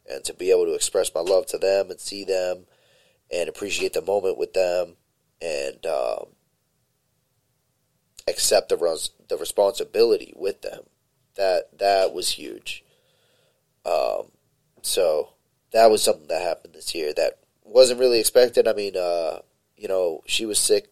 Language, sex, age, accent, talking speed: English, male, 30-49, American, 150 wpm